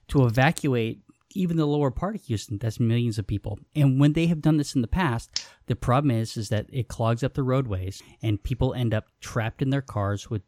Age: 20-39